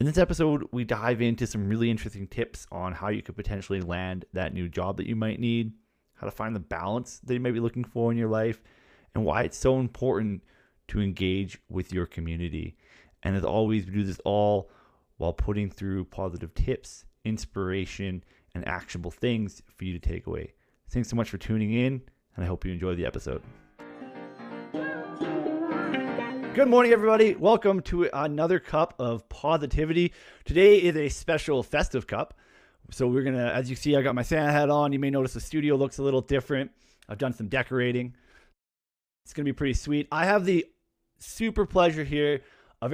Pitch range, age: 100-140 Hz, 30-49